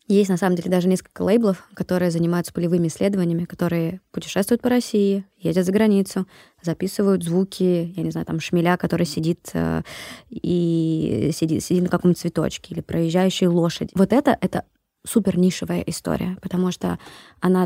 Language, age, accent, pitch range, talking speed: Russian, 20-39, native, 175-195 Hz, 155 wpm